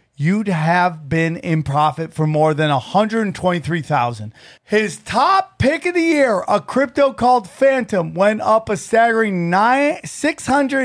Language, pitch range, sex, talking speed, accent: English, 155-205 Hz, male, 165 wpm, American